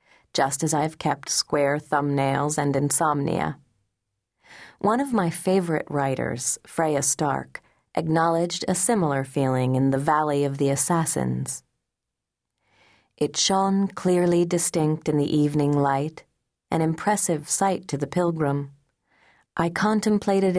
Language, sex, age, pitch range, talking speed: English, female, 40-59, 140-175 Hz, 120 wpm